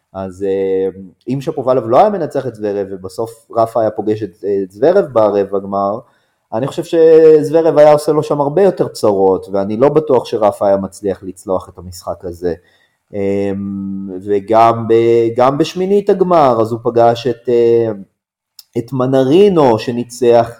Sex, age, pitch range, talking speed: male, 30-49, 105-155 Hz, 135 wpm